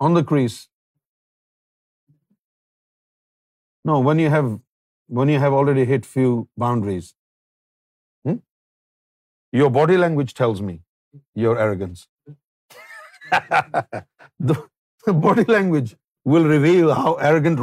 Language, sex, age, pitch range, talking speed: Urdu, male, 50-69, 125-170 Hz, 100 wpm